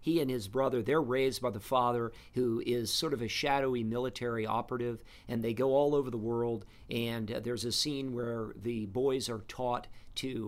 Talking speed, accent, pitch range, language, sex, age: 200 wpm, American, 110-130 Hz, English, male, 50-69